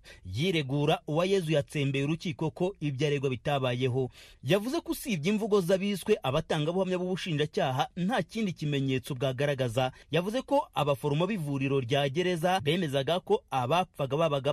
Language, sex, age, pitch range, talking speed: Swahili, male, 30-49, 140-190 Hz, 110 wpm